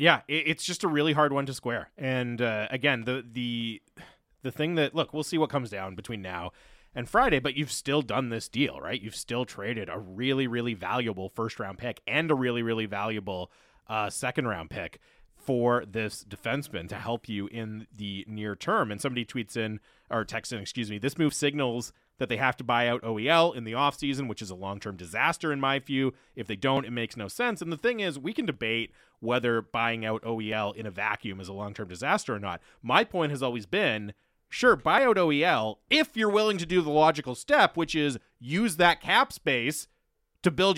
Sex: male